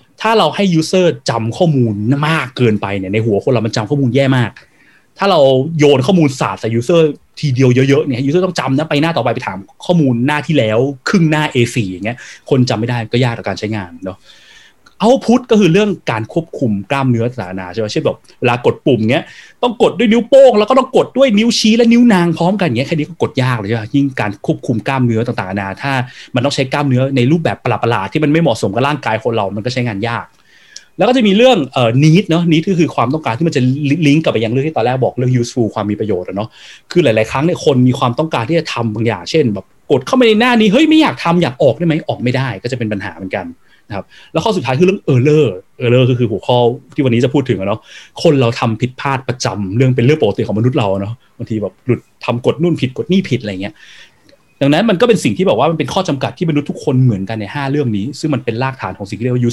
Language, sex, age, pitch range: Thai, male, 30-49, 115-160 Hz